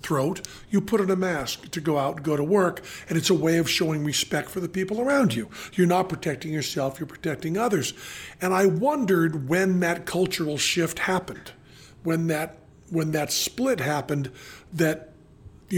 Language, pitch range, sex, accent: English, 150-185 Hz, male, American